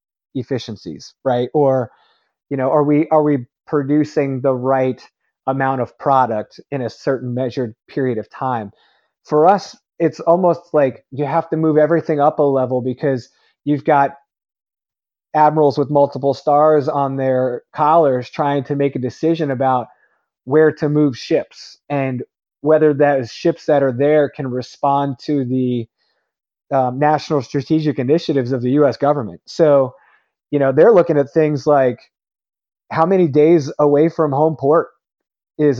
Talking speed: 150 wpm